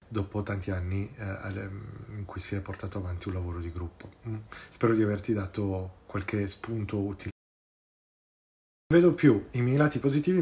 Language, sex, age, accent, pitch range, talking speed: Italian, male, 30-49, native, 105-125 Hz, 160 wpm